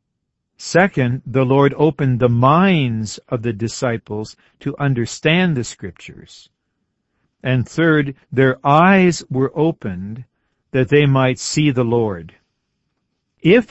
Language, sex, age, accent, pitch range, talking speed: English, male, 50-69, American, 115-145 Hz, 115 wpm